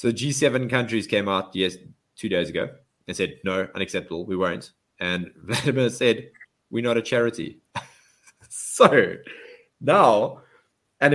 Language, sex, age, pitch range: English, male, 20-39, 100-145 Hz